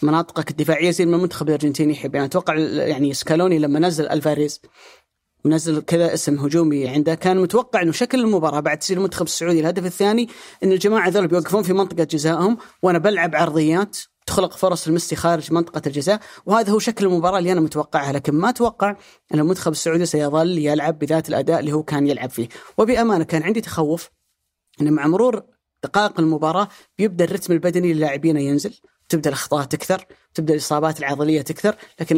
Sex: female